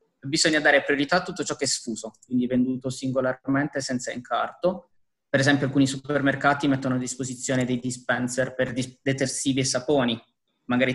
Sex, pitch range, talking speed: male, 125-140 Hz, 165 wpm